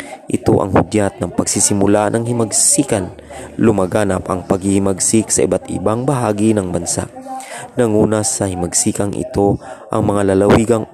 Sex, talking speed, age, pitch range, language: male, 125 wpm, 20-39, 95-110 Hz, Filipino